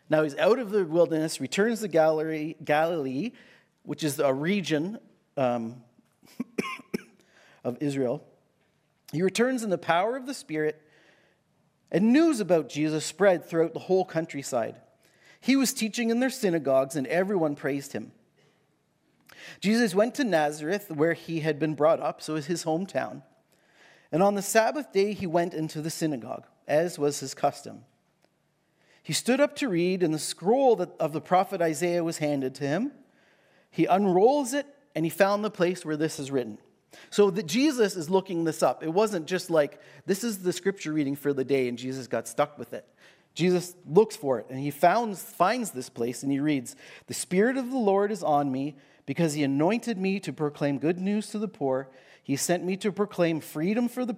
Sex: male